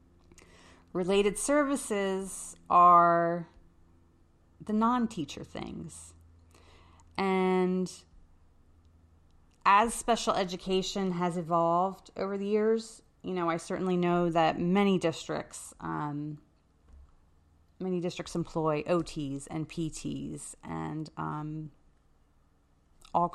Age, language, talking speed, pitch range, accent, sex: 30-49, English, 85 wpm, 110-185 Hz, American, female